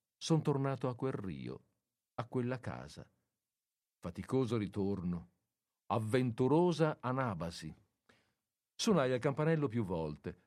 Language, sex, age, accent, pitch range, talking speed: Italian, male, 50-69, native, 95-135 Hz, 95 wpm